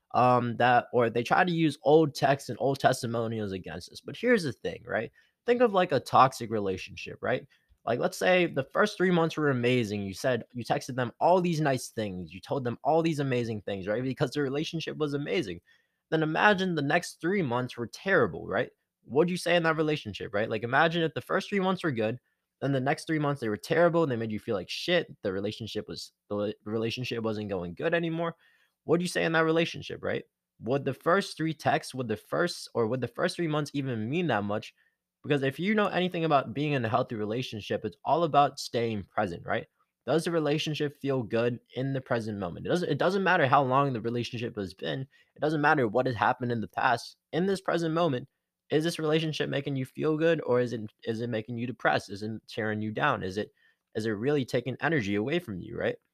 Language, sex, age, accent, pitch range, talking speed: English, male, 20-39, American, 115-160 Hz, 230 wpm